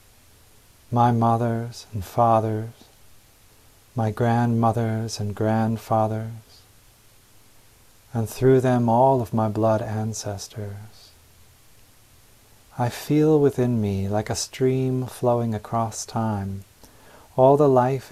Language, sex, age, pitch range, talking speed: English, male, 40-59, 105-115 Hz, 95 wpm